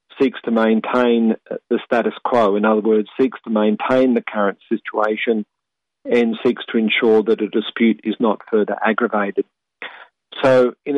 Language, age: English, 50-69